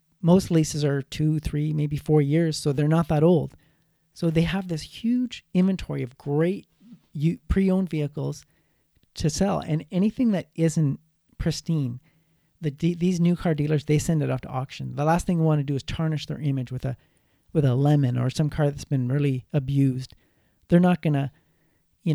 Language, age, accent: English, 40-59, American